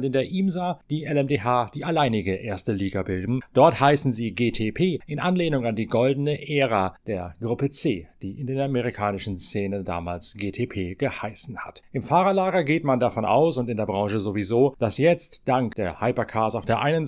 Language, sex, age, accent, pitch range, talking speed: German, male, 40-59, German, 110-140 Hz, 180 wpm